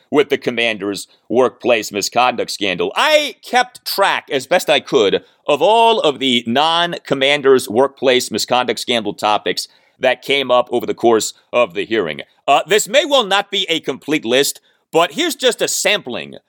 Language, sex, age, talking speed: English, male, 40-59, 165 wpm